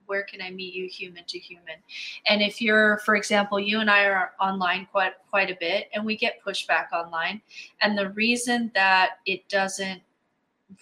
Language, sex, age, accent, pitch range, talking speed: English, female, 20-39, American, 180-200 Hz, 190 wpm